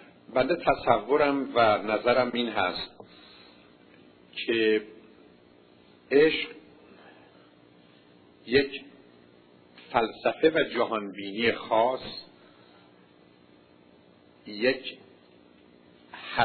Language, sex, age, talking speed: Persian, male, 50-69, 50 wpm